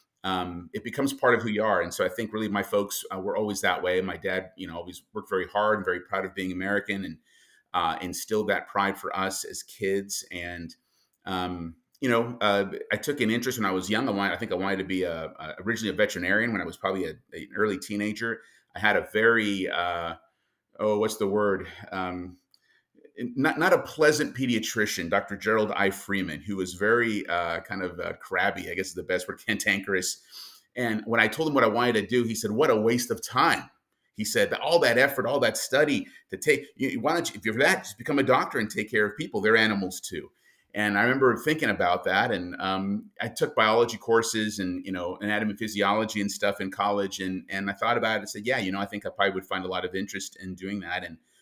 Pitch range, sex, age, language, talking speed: 95-110 Hz, male, 30-49, English, 230 wpm